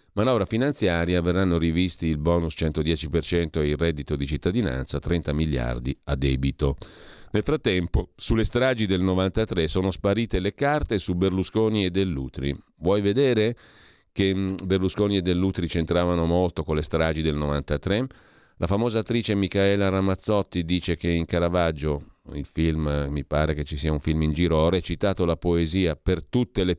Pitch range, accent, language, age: 80-105 Hz, native, Italian, 40-59